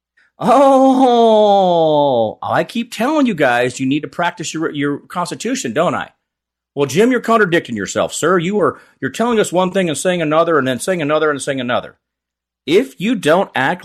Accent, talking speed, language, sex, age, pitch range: American, 180 wpm, English, male, 40-59, 125-190 Hz